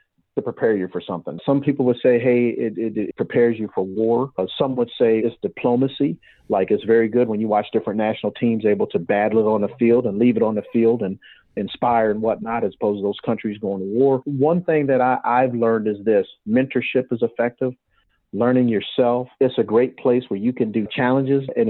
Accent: American